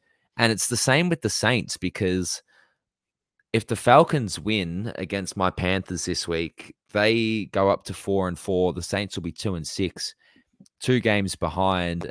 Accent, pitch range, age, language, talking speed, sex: Australian, 90-110 Hz, 20-39, English, 170 wpm, male